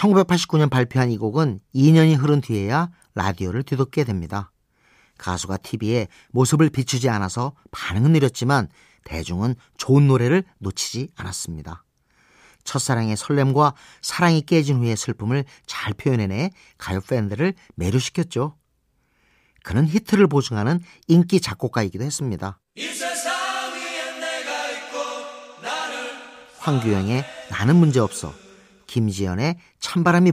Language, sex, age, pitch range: Korean, male, 40-59, 110-165 Hz